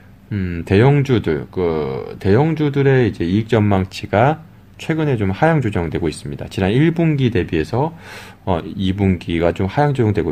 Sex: male